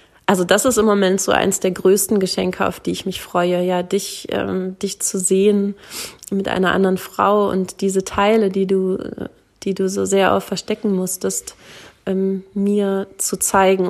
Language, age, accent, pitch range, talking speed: German, 20-39, German, 180-195 Hz, 175 wpm